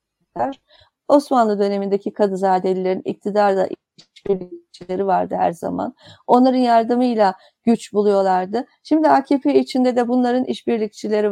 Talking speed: 95 wpm